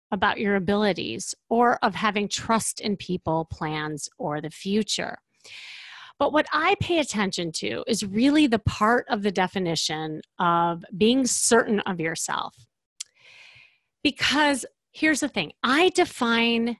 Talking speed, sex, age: 130 wpm, female, 30-49